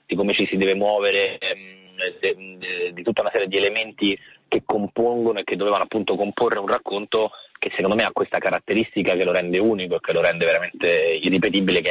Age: 20-39